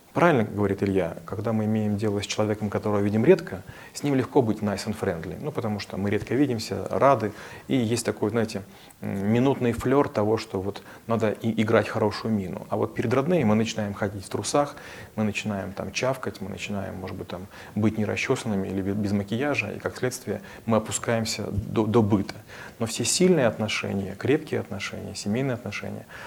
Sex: male